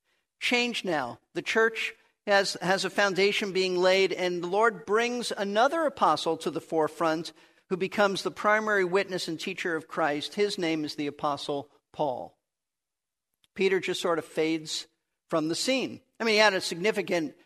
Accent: American